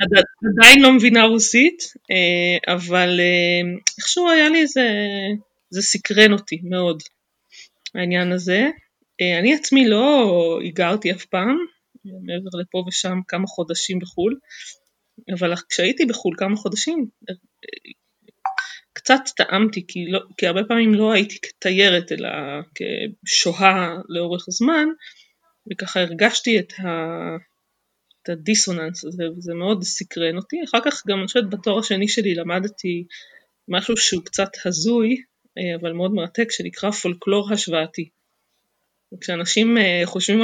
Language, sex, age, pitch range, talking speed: Hebrew, female, 20-39, 175-225 Hz, 115 wpm